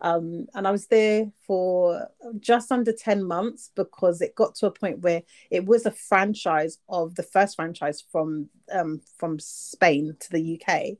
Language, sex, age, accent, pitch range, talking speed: English, female, 30-49, British, 170-200 Hz, 175 wpm